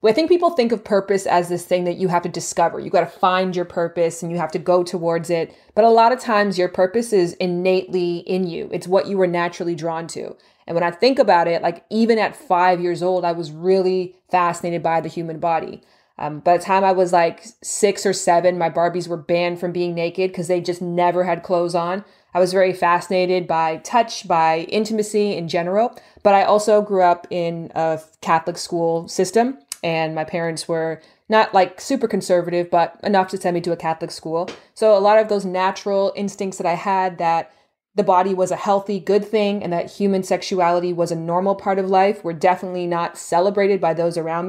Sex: female